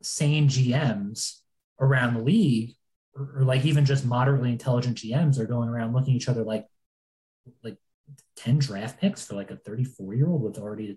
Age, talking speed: 20-39, 185 wpm